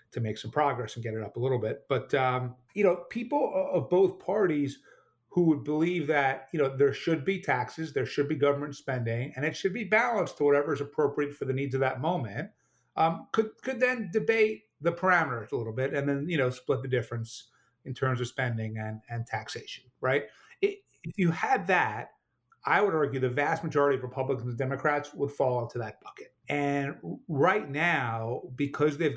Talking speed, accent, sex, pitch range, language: 205 wpm, American, male, 115-145 Hz, English